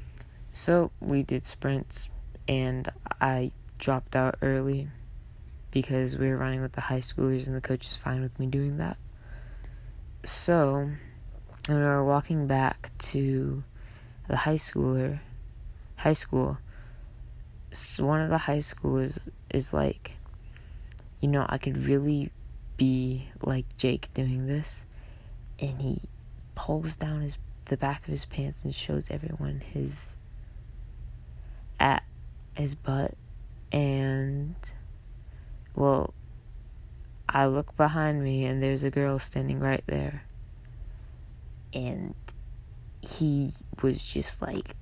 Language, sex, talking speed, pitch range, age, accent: English, female, 120 wpm, 110-140 Hz, 20-39, American